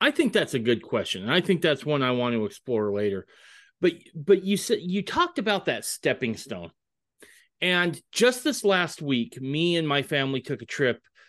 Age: 30-49